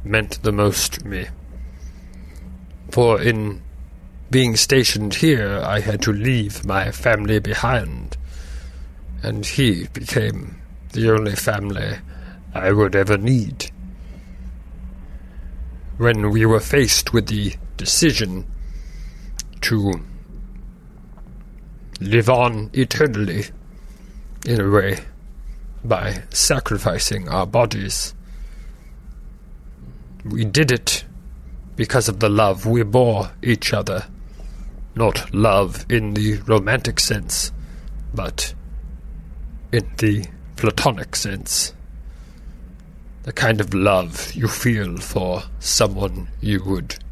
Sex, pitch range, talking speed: male, 65-110 Hz, 100 wpm